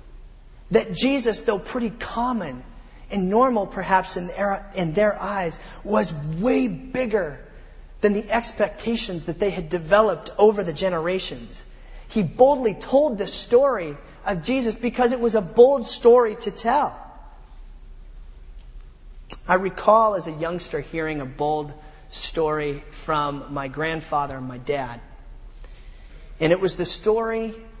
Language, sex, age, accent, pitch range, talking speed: English, male, 30-49, American, 160-220 Hz, 130 wpm